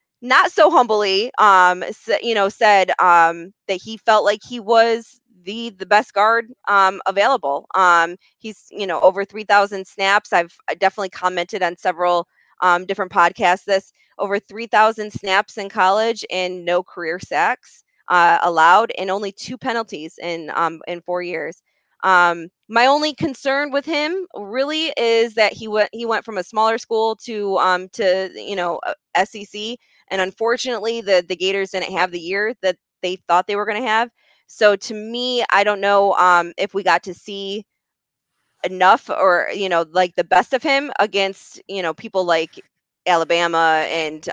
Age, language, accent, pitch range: 20-39, English, American, 175-220 Hz